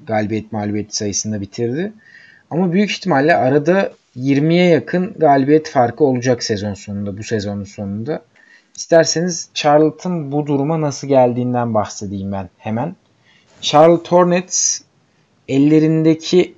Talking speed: 110 wpm